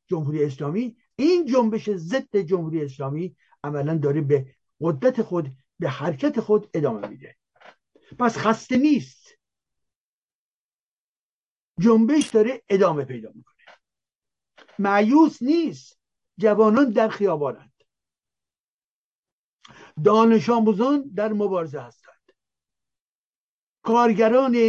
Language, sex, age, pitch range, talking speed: Persian, male, 60-79, 160-235 Hz, 85 wpm